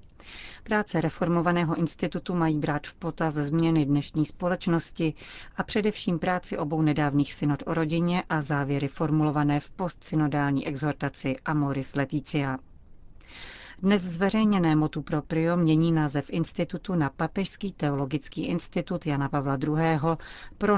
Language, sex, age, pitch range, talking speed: Czech, female, 40-59, 145-170 Hz, 120 wpm